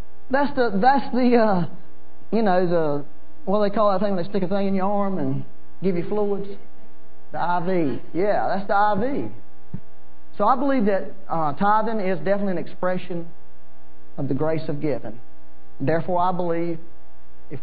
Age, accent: 40-59, American